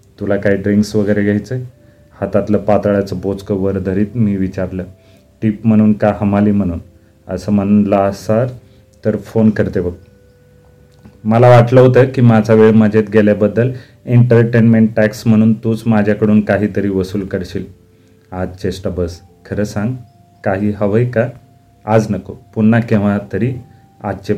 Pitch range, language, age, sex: 100-115 Hz, Marathi, 30-49, male